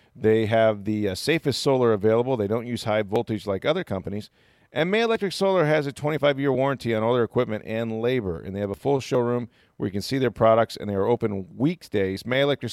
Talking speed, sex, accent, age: 225 wpm, male, American, 40-59